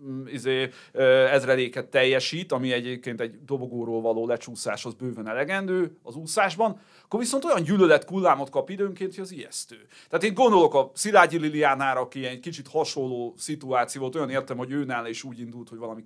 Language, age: Hungarian, 30-49